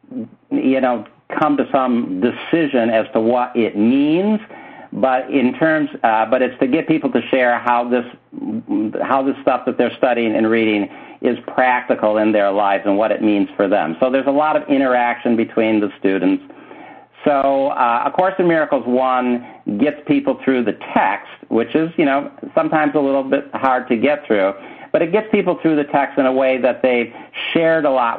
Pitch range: 115-150 Hz